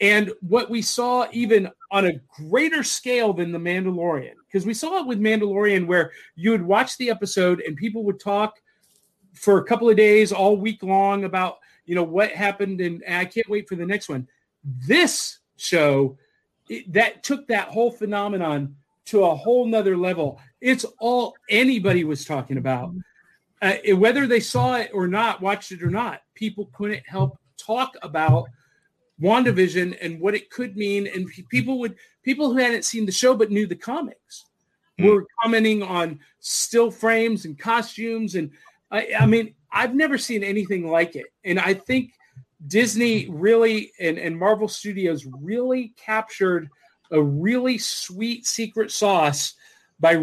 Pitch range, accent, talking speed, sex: 175-225 Hz, American, 165 wpm, male